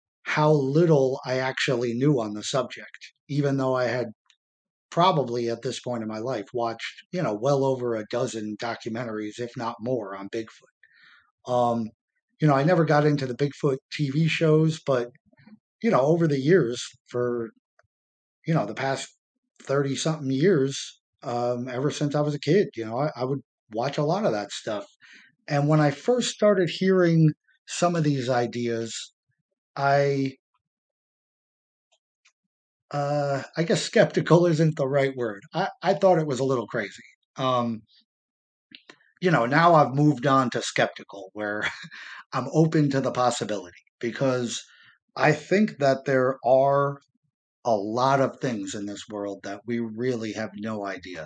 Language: English